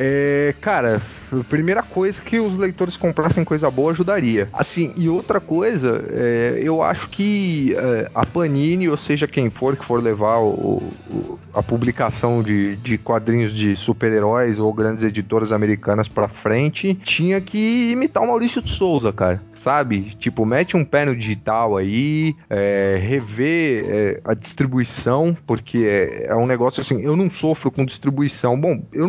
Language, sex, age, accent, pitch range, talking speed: Portuguese, male, 20-39, Brazilian, 110-165 Hz, 165 wpm